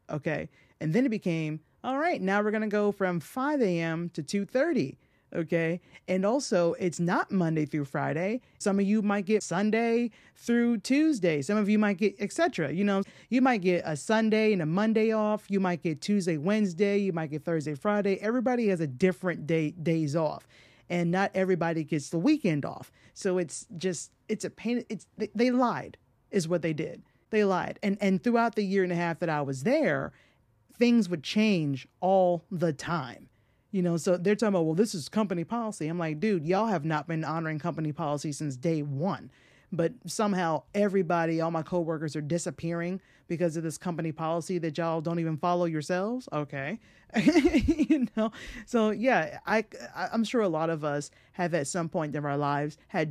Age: 30-49